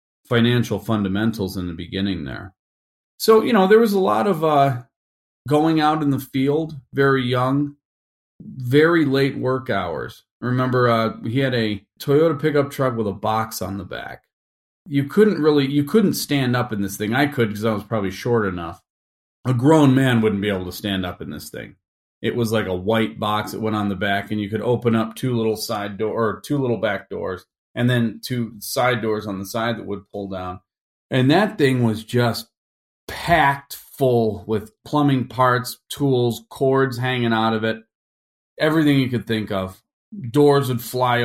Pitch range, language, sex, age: 100-130 Hz, English, male, 40-59